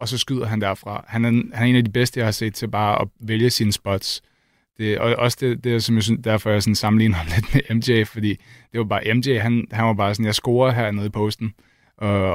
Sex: male